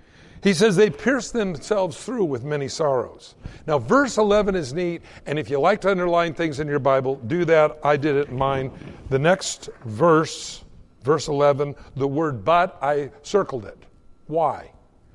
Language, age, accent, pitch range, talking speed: English, 60-79, American, 145-210 Hz, 170 wpm